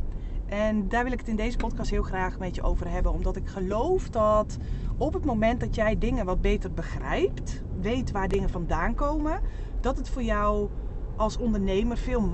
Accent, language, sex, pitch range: Dutch, Dutch, female, 190-240 Hz